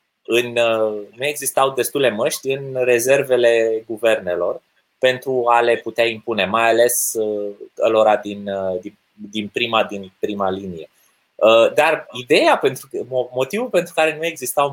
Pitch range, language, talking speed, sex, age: 110-170 Hz, Romanian, 120 wpm, male, 20-39